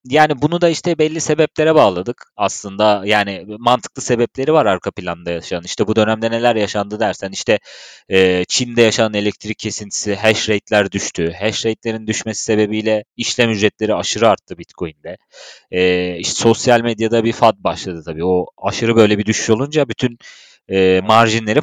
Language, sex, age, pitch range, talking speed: Turkish, male, 30-49, 100-125 Hz, 155 wpm